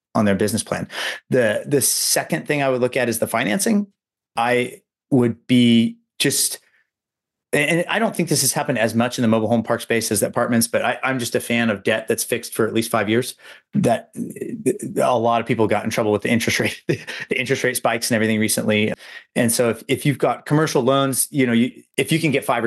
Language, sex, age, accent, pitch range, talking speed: English, male, 30-49, American, 110-130 Hz, 225 wpm